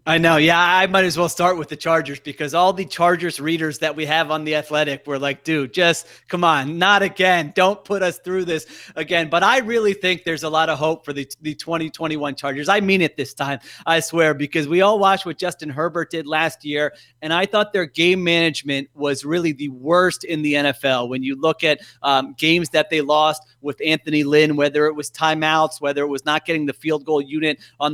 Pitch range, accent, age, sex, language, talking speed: 150-175 Hz, American, 30-49, male, English, 230 wpm